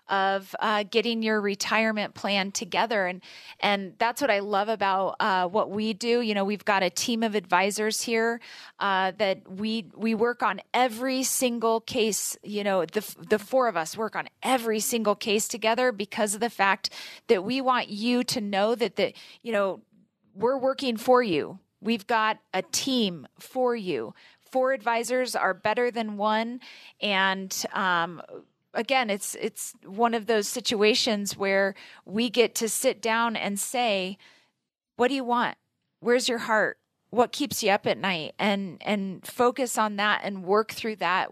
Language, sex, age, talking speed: English, female, 30-49, 170 wpm